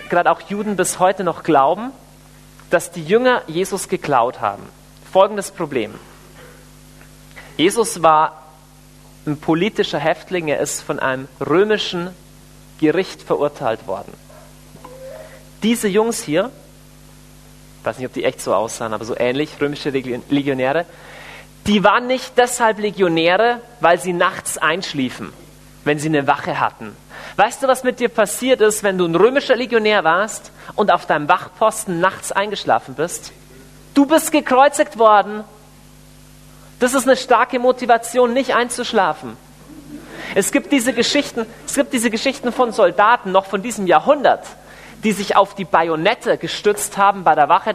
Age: 40-59